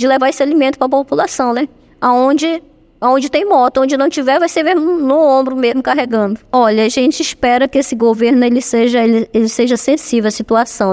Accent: Brazilian